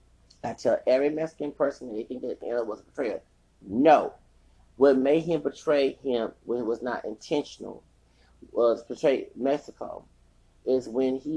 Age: 30-49